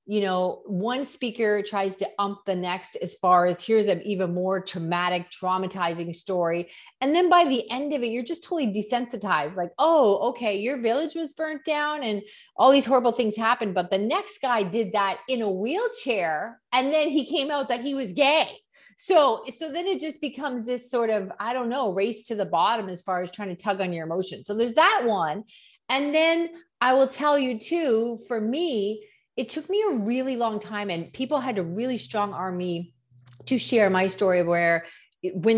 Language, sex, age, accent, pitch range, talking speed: English, female, 30-49, American, 180-260 Hz, 200 wpm